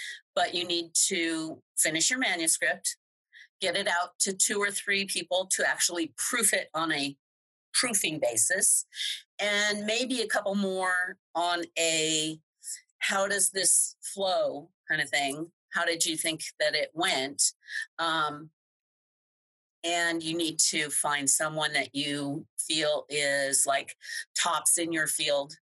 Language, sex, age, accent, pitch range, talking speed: English, female, 40-59, American, 155-200 Hz, 140 wpm